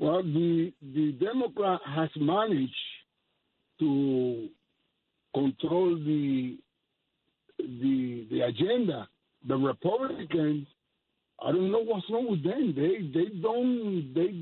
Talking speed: 105 wpm